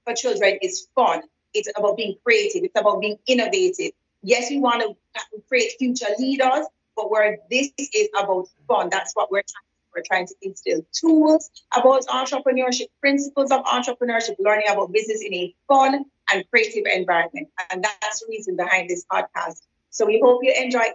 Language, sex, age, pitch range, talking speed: English, female, 30-49, 205-265 Hz, 175 wpm